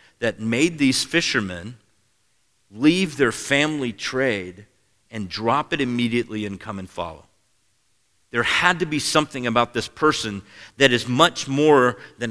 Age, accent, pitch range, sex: 40-59, American, 110-135 Hz, male